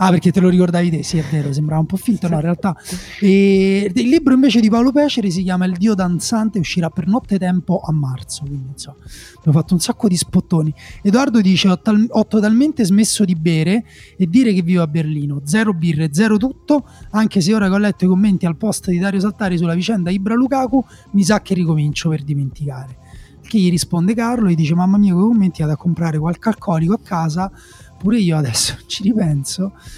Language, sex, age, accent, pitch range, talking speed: Italian, male, 30-49, native, 160-205 Hz, 210 wpm